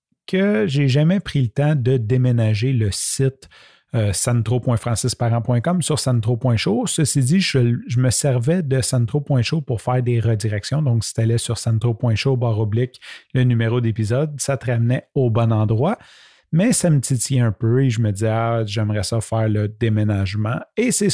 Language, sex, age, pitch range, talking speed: French, male, 30-49, 115-140 Hz, 175 wpm